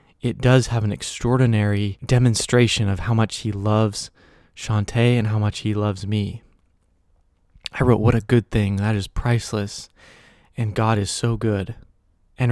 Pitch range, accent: 100-115 Hz, American